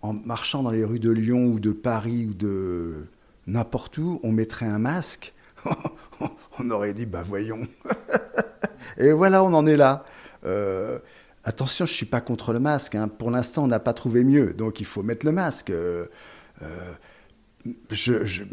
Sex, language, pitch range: male, French, 100-135 Hz